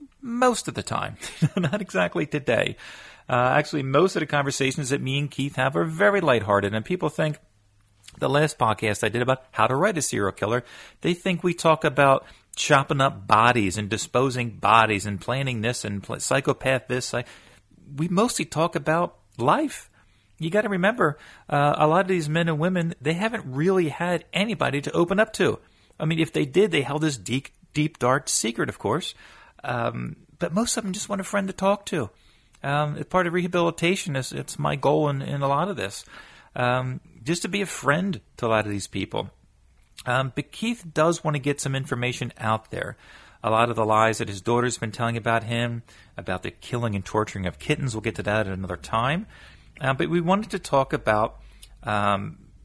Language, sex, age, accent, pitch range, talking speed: English, male, 40-59, American, 115-170 Hz, 200 wpm